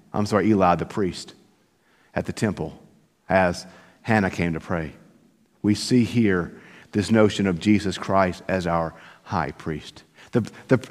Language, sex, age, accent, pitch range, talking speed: English, male, 50-69, American, 115-155 Hz, 145 wpm